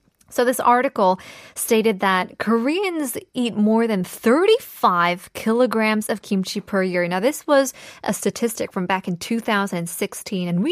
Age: 20-39